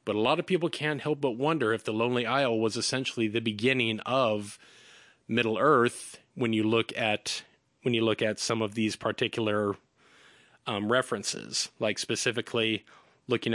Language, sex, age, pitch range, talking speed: English, male, 30-49, 110-135 Hz, 145 wpm